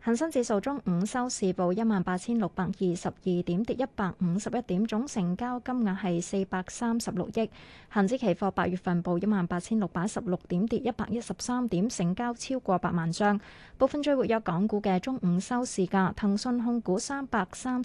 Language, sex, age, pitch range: Chinese, female, 20-39, 185-235 Hz